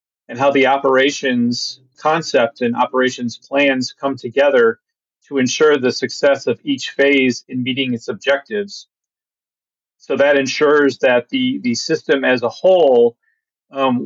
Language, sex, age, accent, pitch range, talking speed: English, male, 40-59, American, 125-145 Hz, 135 wpm